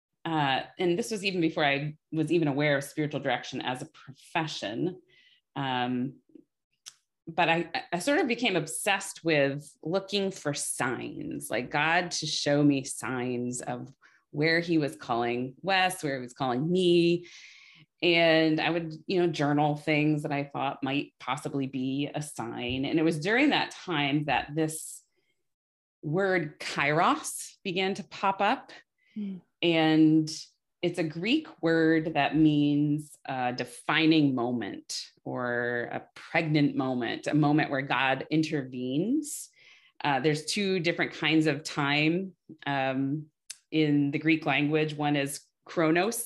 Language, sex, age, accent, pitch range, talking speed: English, female, 30-49, American, 140-170 Hz, 140 wpm